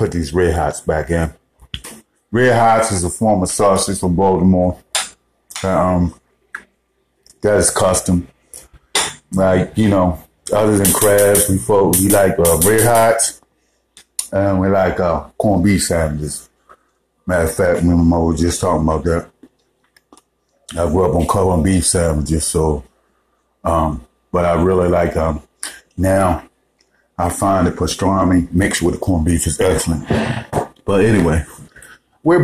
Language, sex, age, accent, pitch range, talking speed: English, male, 30-49, American, 85-100 Hz, 145 wpm